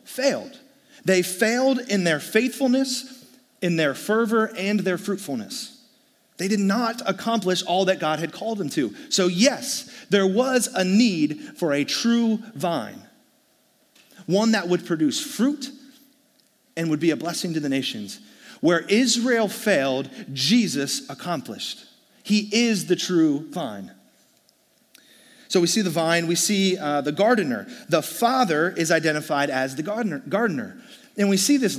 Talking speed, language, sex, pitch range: 145 wpm, English, male, 170-235 Hz